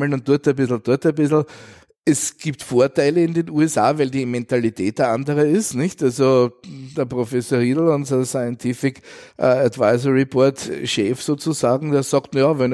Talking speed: 160 wpm